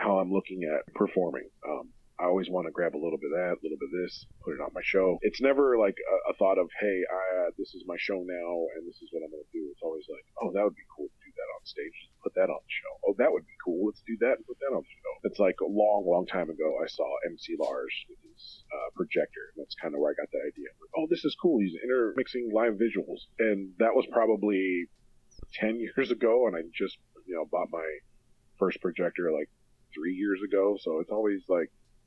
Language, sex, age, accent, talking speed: English, male, 40-59, American, 260 wpm